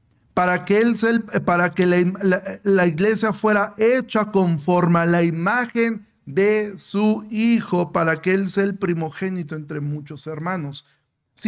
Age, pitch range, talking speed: 40-59, 165-210 Hz, 155 wpm